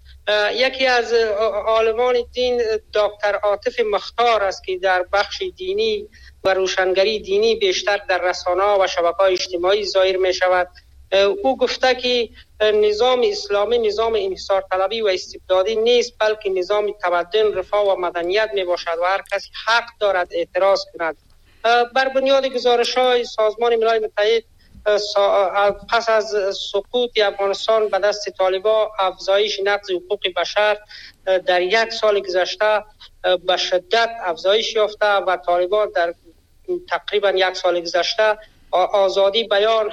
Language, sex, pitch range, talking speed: Persian, male, 185-220 Hz, 125 wpm